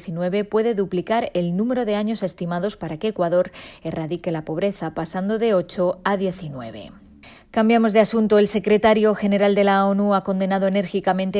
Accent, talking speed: Spanish, 160 wpm